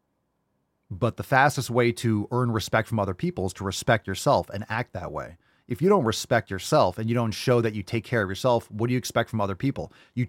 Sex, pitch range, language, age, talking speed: male, 100-125 Hz, English, 30-49, 240 wpm